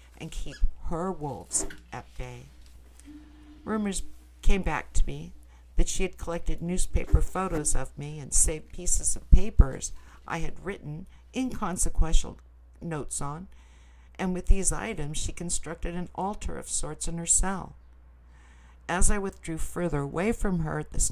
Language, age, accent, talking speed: English, 60-79, American, 150 wpm